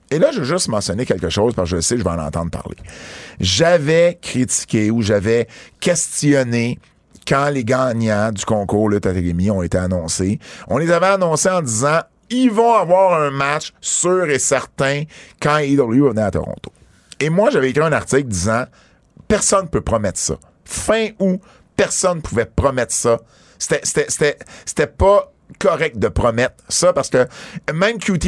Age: 50-69